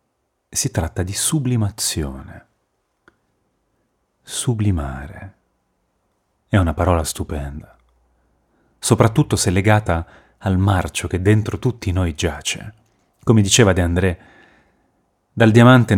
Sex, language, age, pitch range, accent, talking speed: male, Italian, 30-49, 85-110 Hz, native, 95 wpm